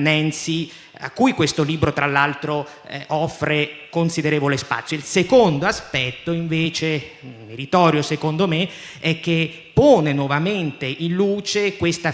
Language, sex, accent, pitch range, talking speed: Italian, male, native, 155-175 Hz, 120 wpm